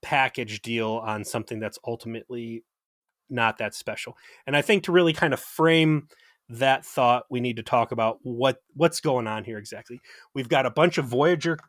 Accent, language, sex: American, English, male